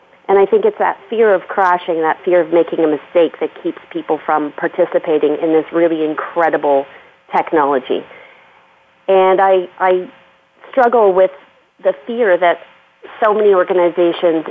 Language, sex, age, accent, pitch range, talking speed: English, female, 40-59, American, 165-210 Hz, 145 wpm